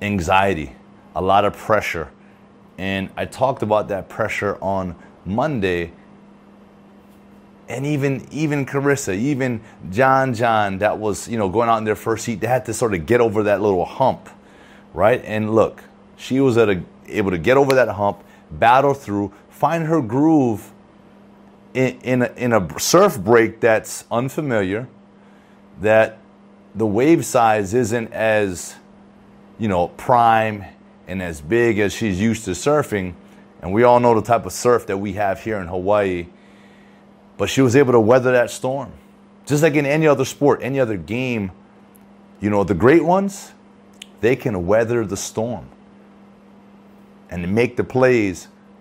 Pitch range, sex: 100-130 Hz, male